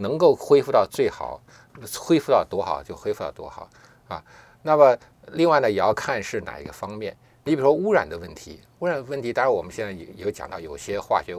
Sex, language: male, Chinese